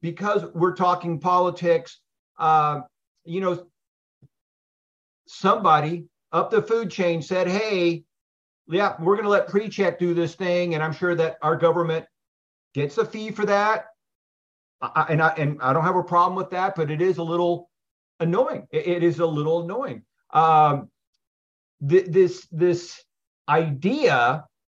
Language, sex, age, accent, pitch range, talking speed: English, male, 50-69, American, 150-180 Hz, 150 wpm